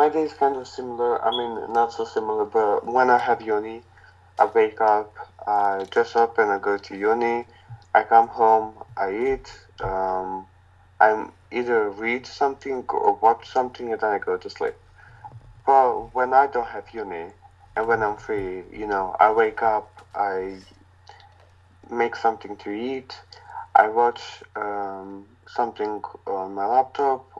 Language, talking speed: English, 160 wpm